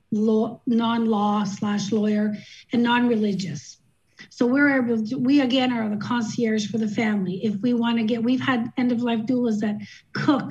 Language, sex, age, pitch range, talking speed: English, female, 40-59, 210-245 Hz, 165 wpm